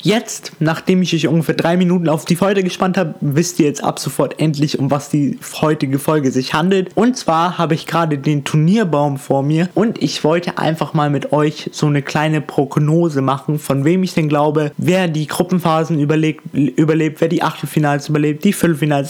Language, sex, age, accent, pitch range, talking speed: German, male, 20-39, German, 150-180 Hz, 195 wpm